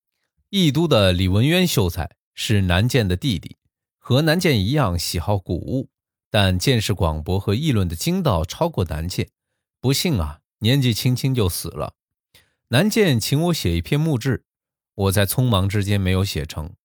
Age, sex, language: 20-39, male, Chinese